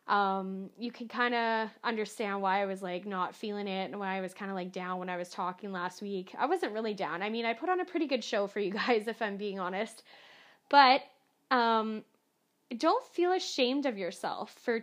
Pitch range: 205-265 Hz